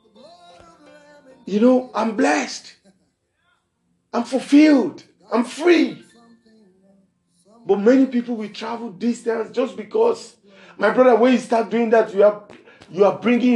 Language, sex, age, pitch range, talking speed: English, male, 50-69, 190-255 Hz, 125 wpm